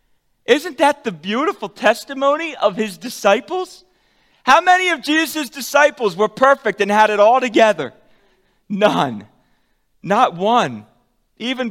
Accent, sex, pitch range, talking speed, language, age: American, male, 145-230 Hz, 125 wpm, English, 40-59